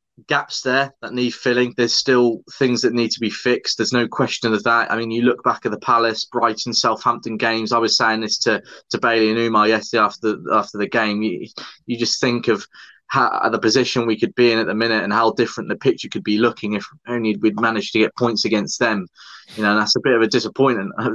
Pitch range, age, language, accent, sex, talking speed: 105-120 Hz, 20-39, English, British, male, 240 wpm